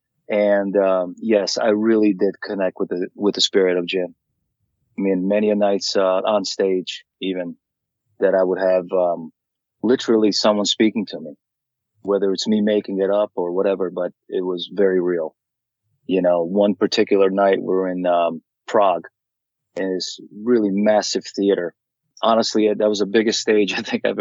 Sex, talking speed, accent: male, 175 wpm, American